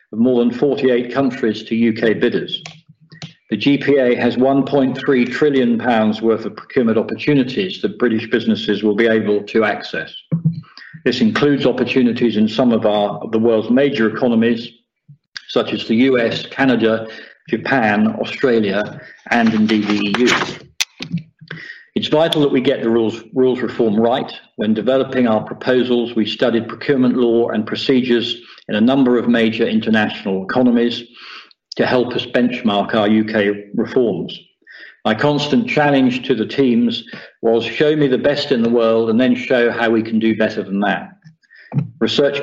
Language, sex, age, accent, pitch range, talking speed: English, male, 50-69, British, 110-140 Hz, 150 wpm